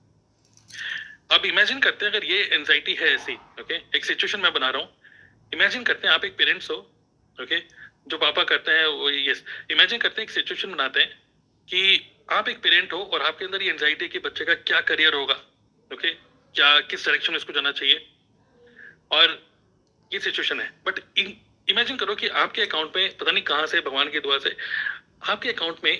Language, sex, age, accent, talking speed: Hindi, male, 30-49, native, 135 wpm